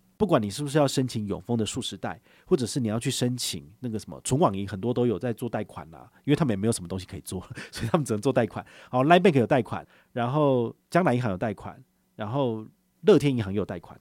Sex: male